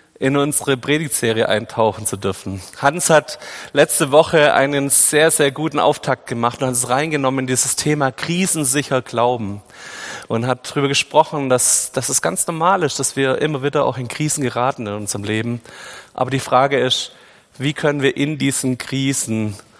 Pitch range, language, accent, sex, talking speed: 120-140 Hz, German, German, male, 170 wpm